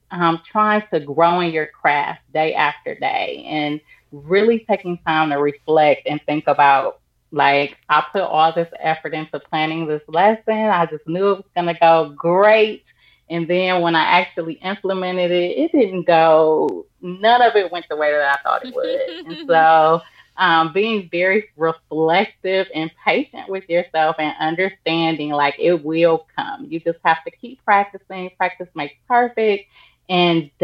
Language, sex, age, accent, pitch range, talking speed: English, female, 30-49, American, 155-195 Hz, 165 wpm